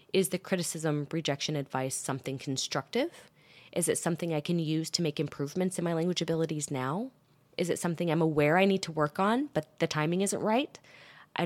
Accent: American